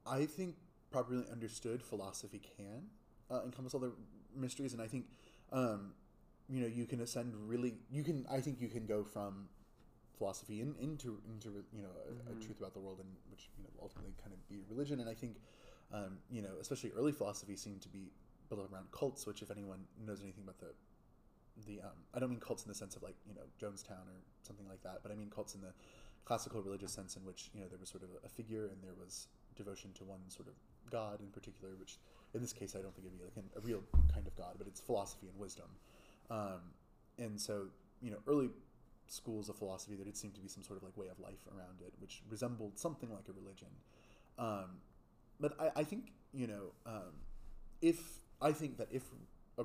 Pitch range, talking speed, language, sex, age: 95-120 Hz, 220 wpm, English, male, 20-39